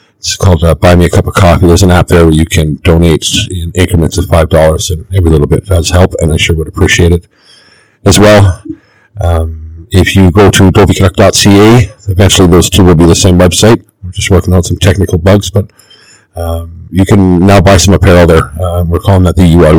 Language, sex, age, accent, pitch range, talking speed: English, male, 50-69, American, 85-100 Hz, 220 wpm